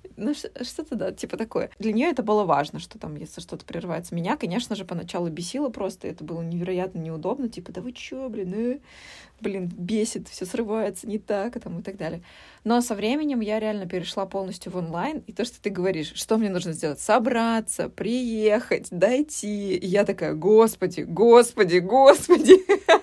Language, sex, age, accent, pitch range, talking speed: Russian, female, 20-39, native, 170-220 Hz, 175 wpm